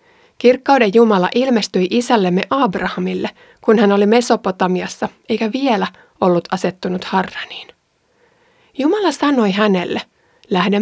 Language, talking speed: Finnish, 100 wpm